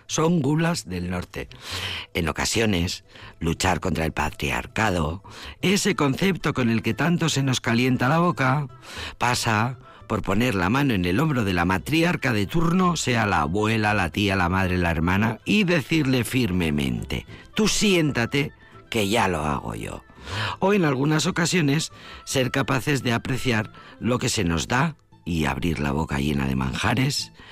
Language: Spanish